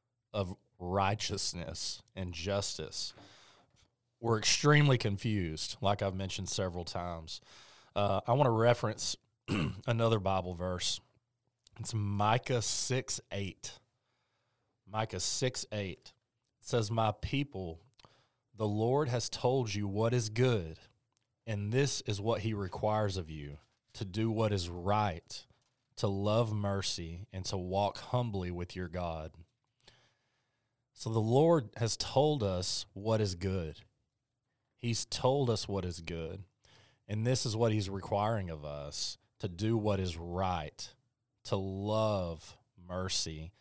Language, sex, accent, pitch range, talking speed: English, male, American, 90-120 Hz, 125 wpm